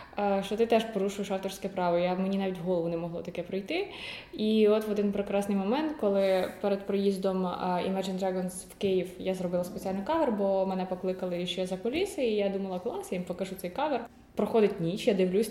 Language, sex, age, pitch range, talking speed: Ukrainian, female, 20-39, 185-225 Hz, 195 wpm